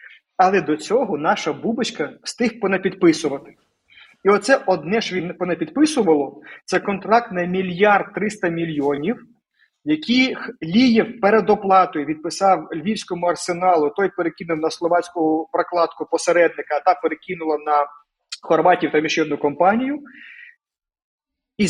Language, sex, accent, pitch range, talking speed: Ukrainian, male, native, 160-220 Hz, 115 wpm